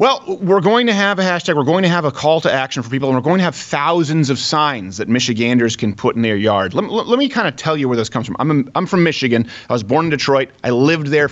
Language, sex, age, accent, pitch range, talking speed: English, male, 30-49, American, 125-185 Hz, 300 wpm